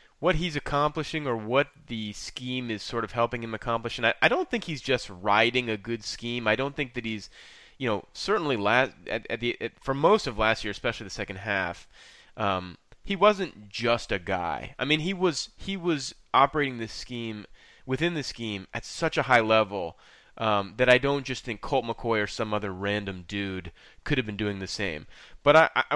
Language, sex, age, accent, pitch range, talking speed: English, male, 30-49, American, 100-130 Hz, 210 wpm